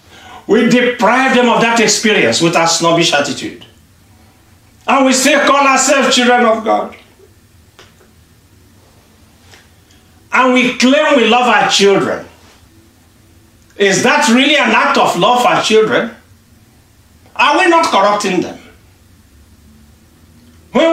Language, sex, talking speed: English, male, 115 wpm